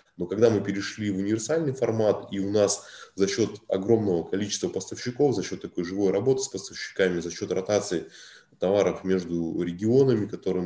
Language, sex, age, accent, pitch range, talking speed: Russian, male, 20-39, native, 90-110 Hz, 165 wpm